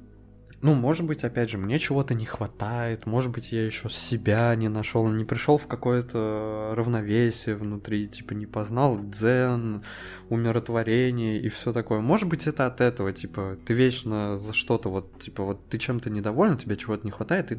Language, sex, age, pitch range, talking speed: Russian, male, 20-39, 105-135 Hz, 175 wpm